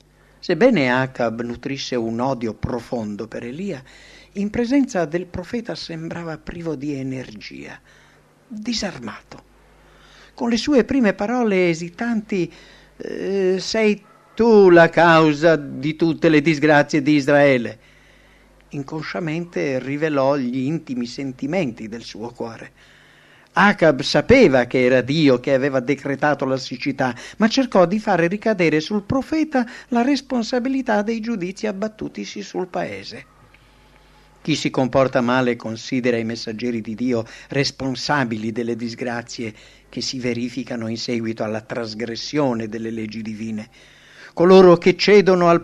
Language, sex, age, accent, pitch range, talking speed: English, male, 50-69, Italian, 125-180 Hz, 120 wpm